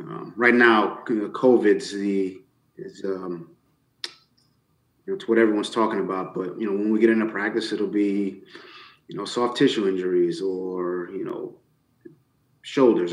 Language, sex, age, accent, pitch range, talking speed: English, male, 30-49, American, 100-115 Hz, 145 wpm